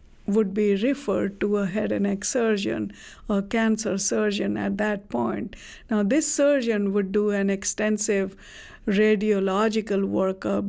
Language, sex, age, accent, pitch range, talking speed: English, female, 50-69, Indian, 200-235 Hz, 135 wpm